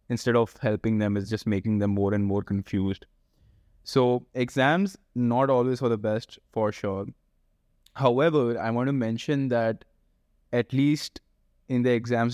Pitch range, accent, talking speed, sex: 100-120 Hz, Indian, 155 wpm, male